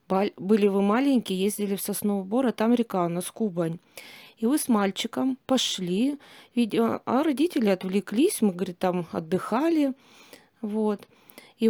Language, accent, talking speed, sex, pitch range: Russian, native, 135 wpm, female, 190-245 Hz